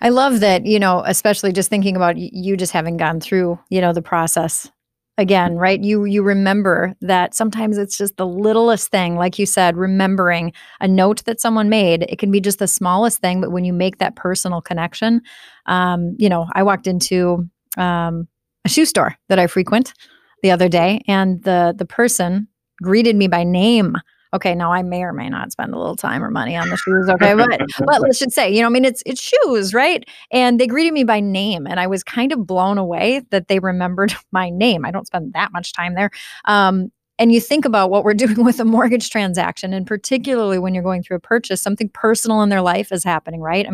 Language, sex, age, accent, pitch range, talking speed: English, female, 30-49, American, 180-215 Hz, 220 wpm